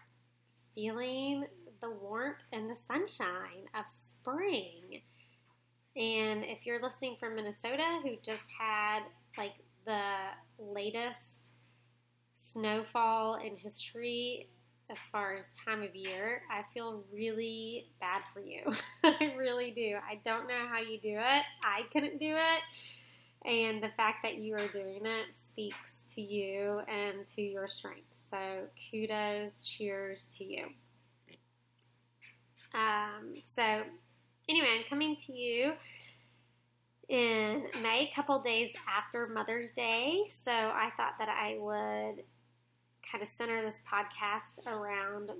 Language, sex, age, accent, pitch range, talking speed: English, female, 20-39, American, 190-235 Hz, 125 wpm